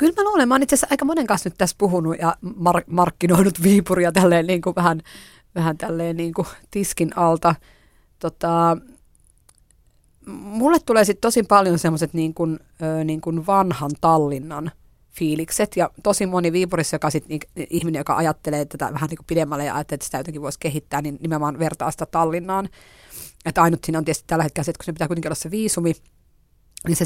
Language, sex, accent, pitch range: Finnish, female, native, 150-185 Hz